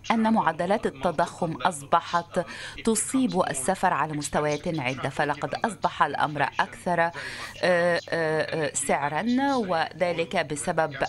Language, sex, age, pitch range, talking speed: Arabic, female, 30-49, 165-220 Hz, 85 wpm